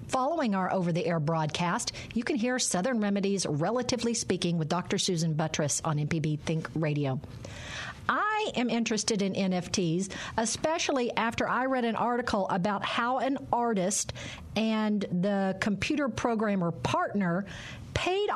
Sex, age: female, 50-69